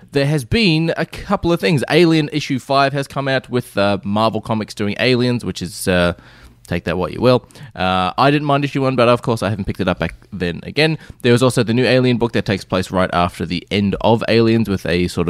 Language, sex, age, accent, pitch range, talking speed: English, male, 20-39, Australian, 100-125 Hz, 245 wpm